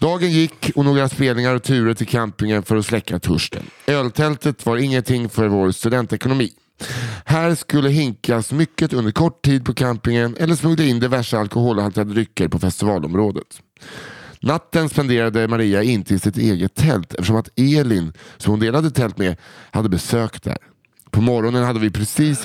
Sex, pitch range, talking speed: male, 105-135 Hz, 165 wpm